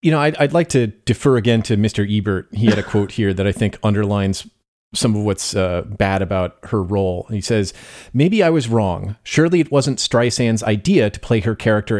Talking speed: 215 wpm